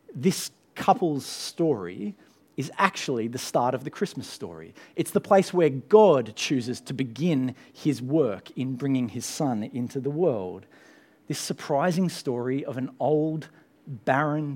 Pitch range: 135-195 Hz